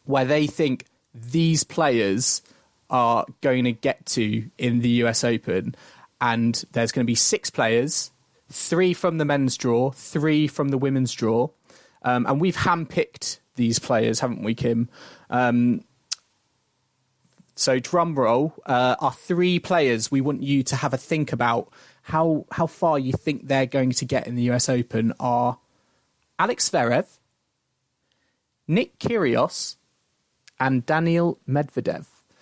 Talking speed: 145 wpm